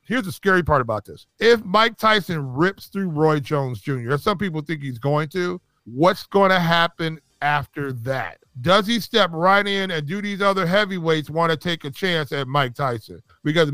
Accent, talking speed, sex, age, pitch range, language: American, 190 wpm, male, 40-59, 155-185 Hz, English